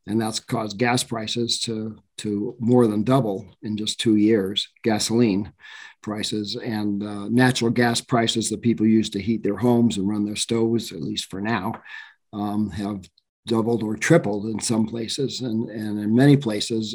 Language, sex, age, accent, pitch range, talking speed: English, male, 50-69, American, 105-125 Hz, 175 wpm